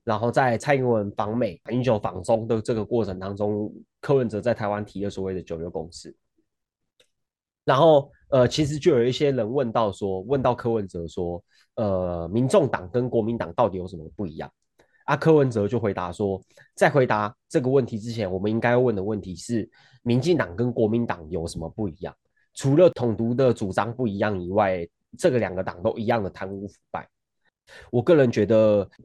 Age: 20-39